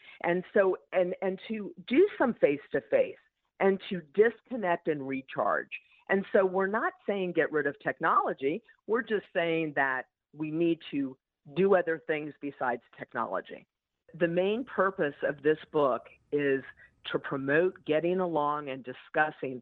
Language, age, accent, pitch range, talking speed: English, 50-69, American, 145-180 Hz, 145 wpm